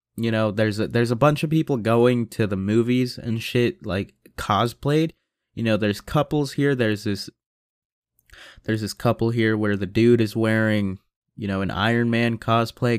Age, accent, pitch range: 20-39, American, 105-125 Hz